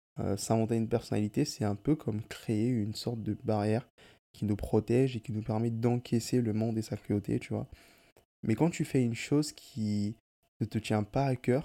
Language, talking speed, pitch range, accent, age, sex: French, 205 wpm, 105-130 Hz, French, 20-39, male